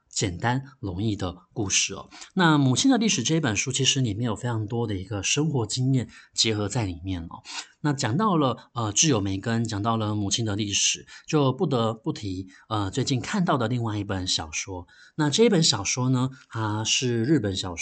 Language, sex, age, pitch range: Chinese, male, 20-39, 105-145 Hz